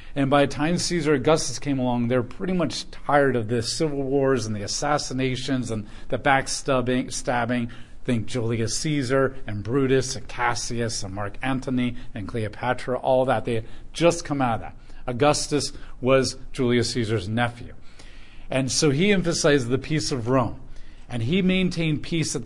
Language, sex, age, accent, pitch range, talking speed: English, male, 40-59, American, 120-160 Hz, 165 wpm